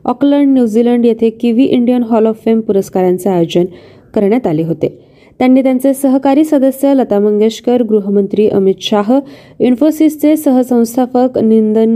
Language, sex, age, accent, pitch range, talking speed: Marathi, female, 20-39, native, 195-255 Hz, 125 wpm